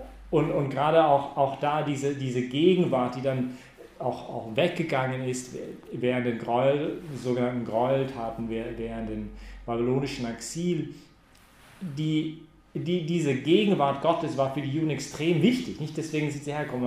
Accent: German